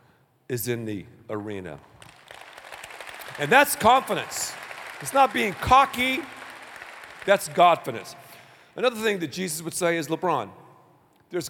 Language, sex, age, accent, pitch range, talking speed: English, male, 40-59, American, 170-235 Hz, 115 wpm